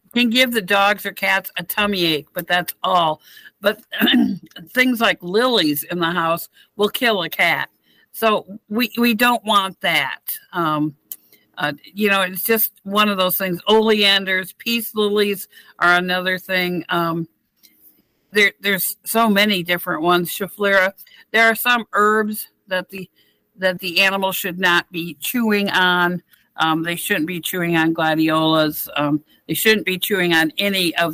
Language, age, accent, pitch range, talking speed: English, 60-79, American, 165-210 Hz, 160 wpm